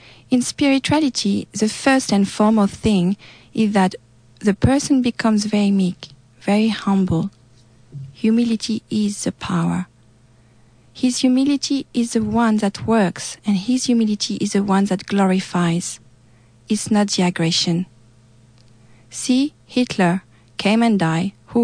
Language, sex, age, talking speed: English, female, 40-59, 125 wpm